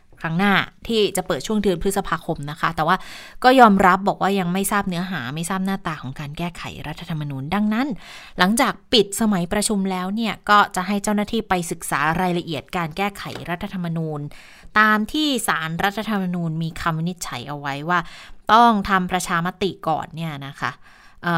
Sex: female